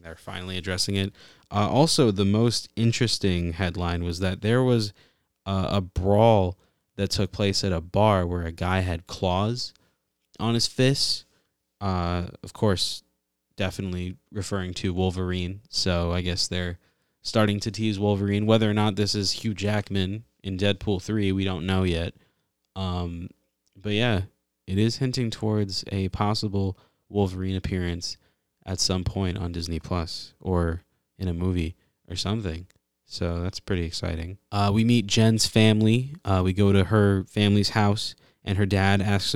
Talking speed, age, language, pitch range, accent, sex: 155 wpm, 20-39, English, 95-110 Hz, American, male